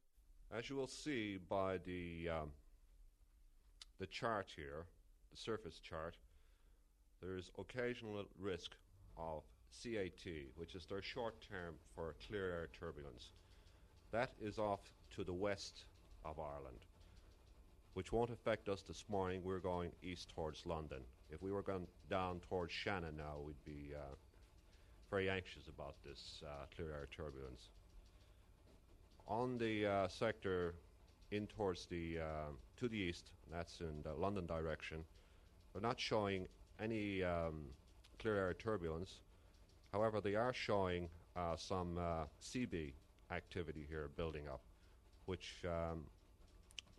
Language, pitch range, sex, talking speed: English, 80-95 Hz, male, 130 wpm